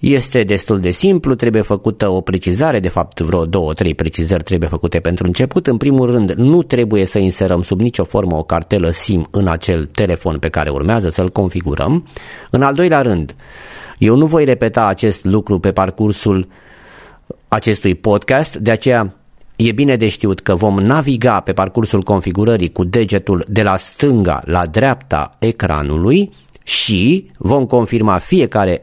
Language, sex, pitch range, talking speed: Romanian, male, 90-130 Hz, 160 wpm